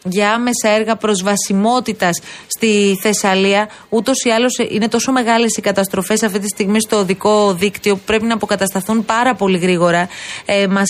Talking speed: 155 wpm